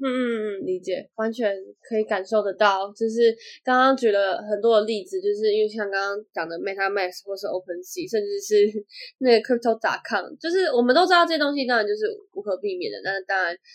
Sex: female